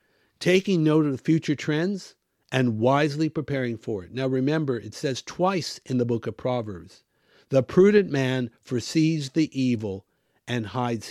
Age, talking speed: 60-79, 155 wpm